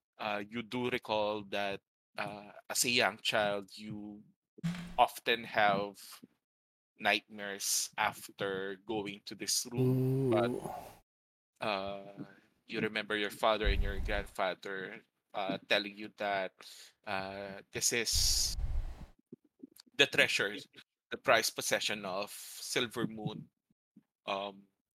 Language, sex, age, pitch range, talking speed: English, male, 20-39, 95-110 Hz, 105 wpm